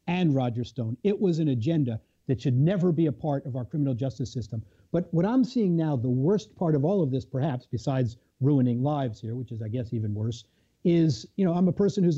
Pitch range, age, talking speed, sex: 130-180 Hz, 50-69, 235 wpm, male